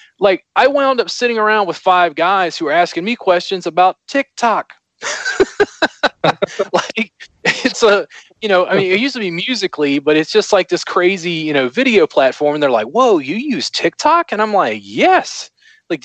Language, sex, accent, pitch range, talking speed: English, male, American, 145-230 Hz, 185 wpm